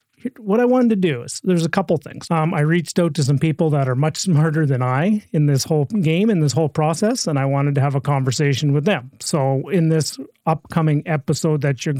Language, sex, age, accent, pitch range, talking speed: English, male, 30-49, American, 140-170 Hz, 235 wpm